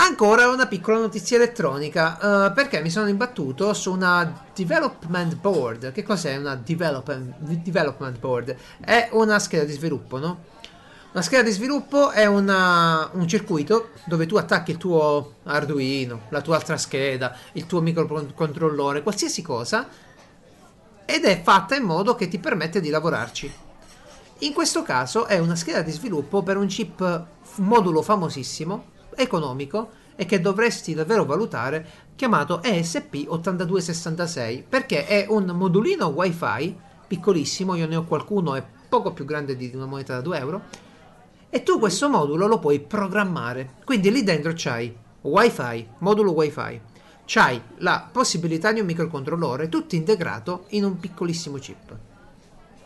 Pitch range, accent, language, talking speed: 150-210 Hz, native, Italian, 140 wpm